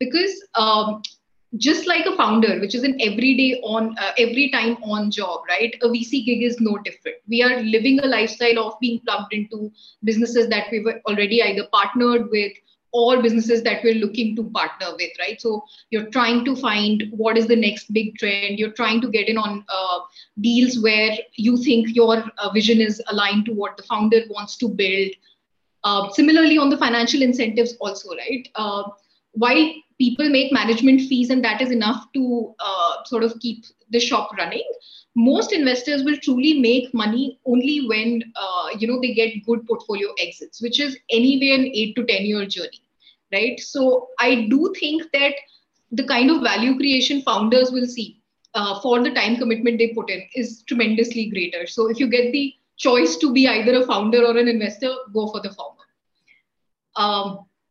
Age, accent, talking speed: 30-49, Indian, 185 wpm